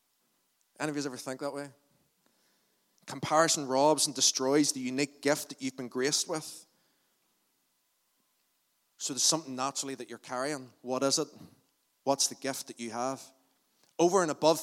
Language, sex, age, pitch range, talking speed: English, male, 30-49, 135-155 Hz, 155 wpm